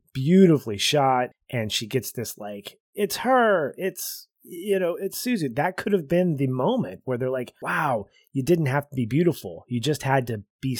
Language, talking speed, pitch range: English, 195 wpm, 120-155 Hz